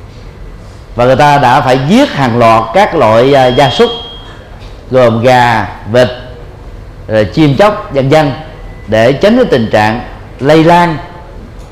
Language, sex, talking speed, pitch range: Vietnamese, male, 140 wpm, 110-150 Hz